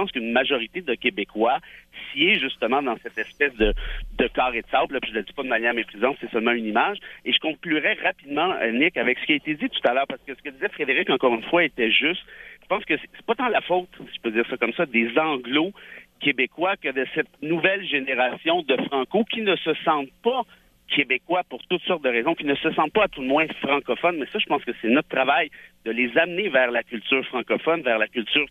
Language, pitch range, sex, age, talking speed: French, 120-180 Hz, male, 50-69, 250 wpm